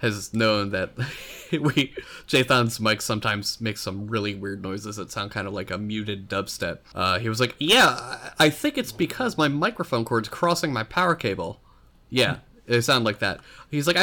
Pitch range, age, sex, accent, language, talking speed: 105-150 Hz, 20-39, male, American, English, 185 wpm